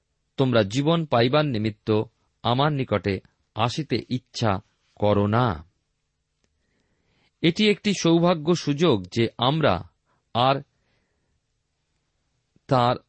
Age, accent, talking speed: 40-59, native, 85 wpm